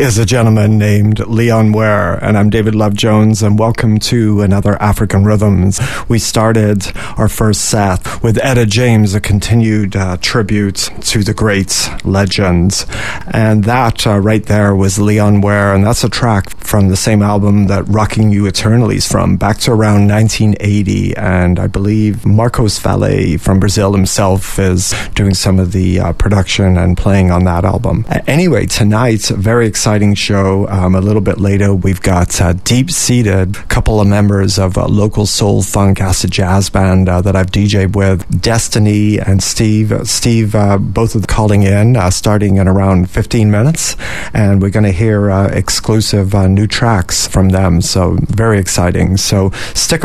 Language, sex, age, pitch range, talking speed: English, male, 30-49, 95-110 Hz, 175 wpm